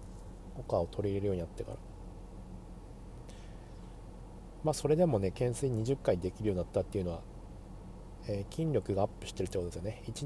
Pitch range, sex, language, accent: 90-115 Hz, male, Japanese, native